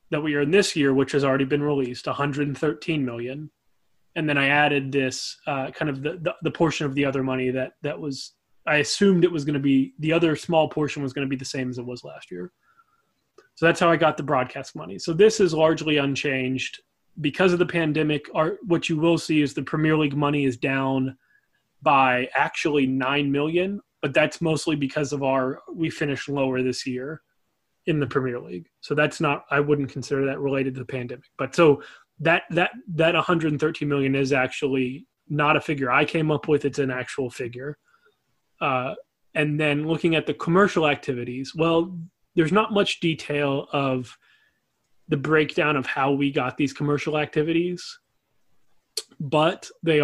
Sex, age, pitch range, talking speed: male, 20-39, 135-165 Hz, 190 wpm